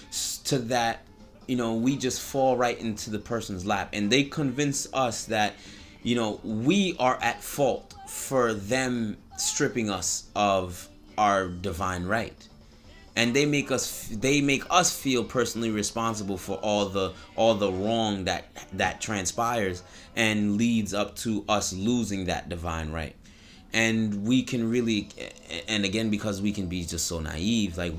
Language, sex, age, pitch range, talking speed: English, male, 30-49, 95-125 Hz, 155 wpm